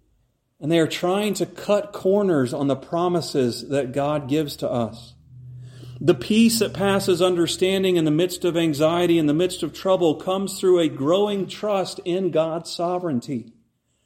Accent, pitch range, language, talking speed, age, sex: American, 140-180 Hz, English, 160 wpm, 40-59, male